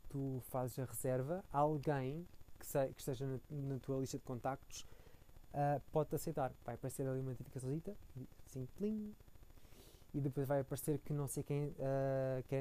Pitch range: 120-145 Hz